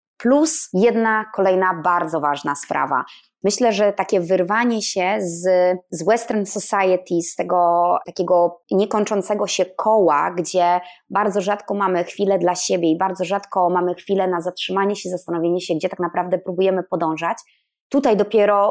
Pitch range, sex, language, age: 180-215 Hz, female, Polish, 20-39